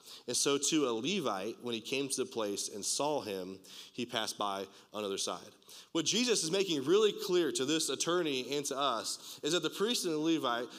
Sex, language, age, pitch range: male, English, 30-49, 120-160 Hz